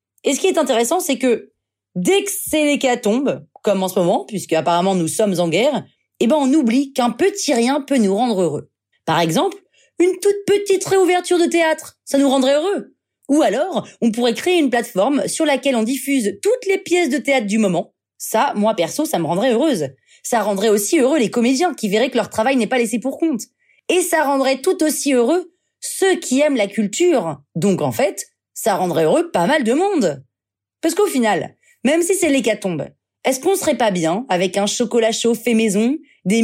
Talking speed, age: 205 wpm, 30-49